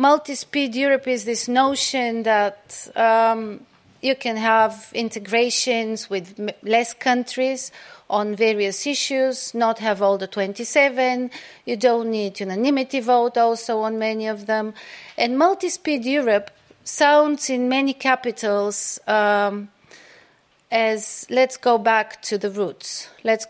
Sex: female